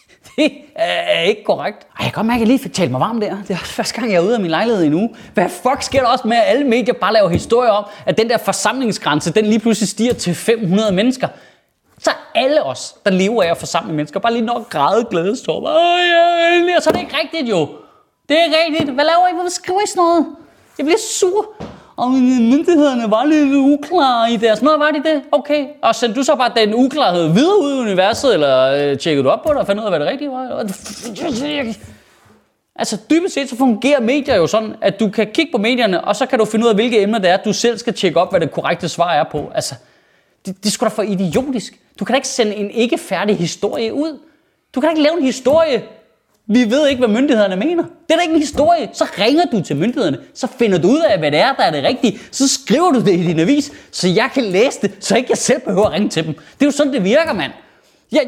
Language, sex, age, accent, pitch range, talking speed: Danish, male, 30-49, native, 200-290 Hz, 250 wpm